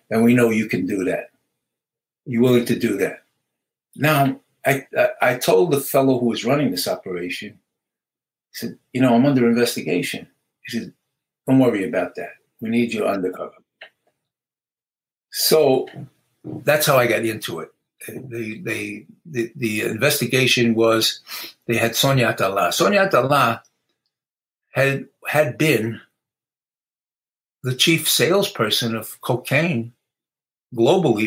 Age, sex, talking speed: 60-79, male, 135 wpm